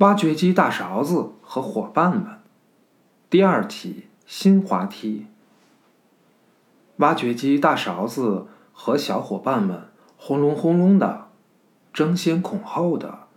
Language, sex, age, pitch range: Chinese, male, 50-69, 170-220 Hz